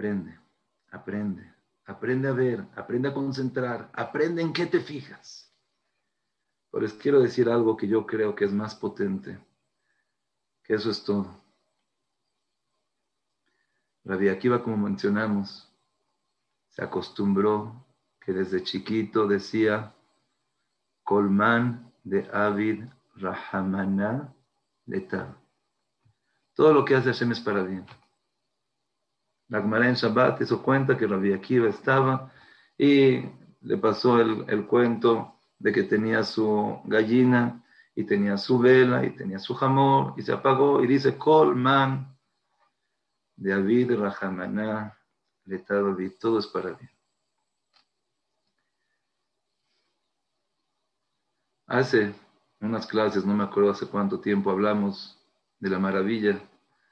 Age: 50-69